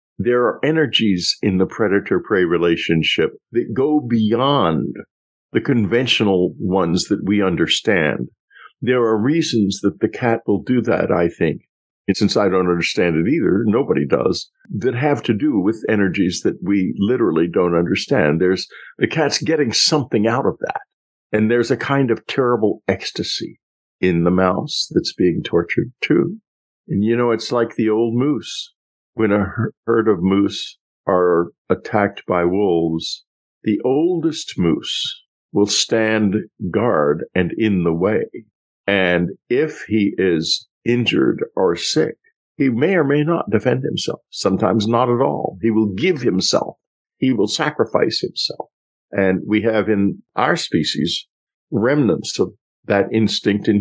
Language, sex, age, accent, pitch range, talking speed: English, male, 50-69, American, 95-120 Hz, 150 wpm